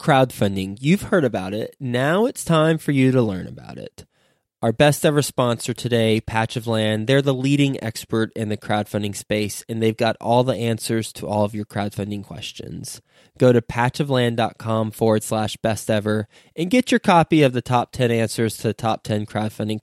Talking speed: 190 wpm